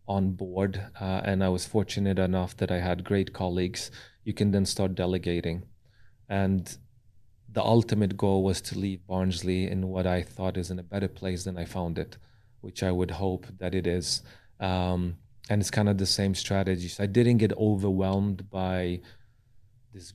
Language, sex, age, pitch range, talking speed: English, male, 30-49, 95-105 Hz, 180 wpm